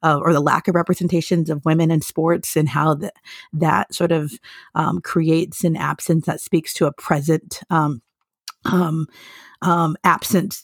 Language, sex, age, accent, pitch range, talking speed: English, female, 30-49, American, 155-175 Hz, 160 wpm